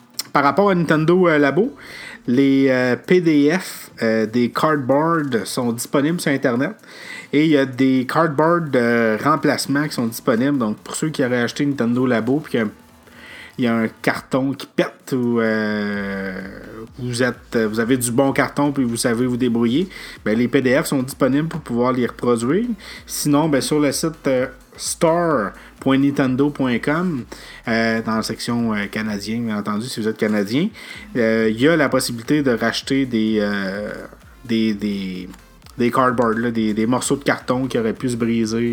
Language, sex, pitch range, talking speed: French, male, 115-140 Hz, 175 wpm